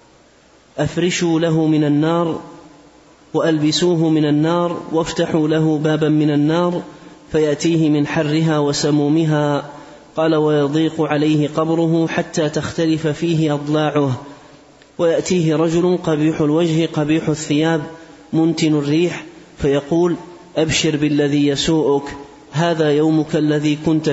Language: Arabic